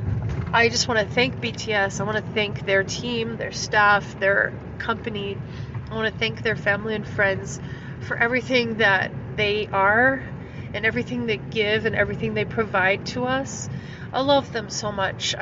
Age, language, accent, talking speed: 30-49, English, American, 170 wpm